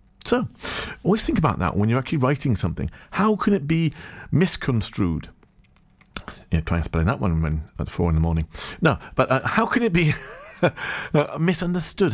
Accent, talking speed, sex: British, 175 wpm, male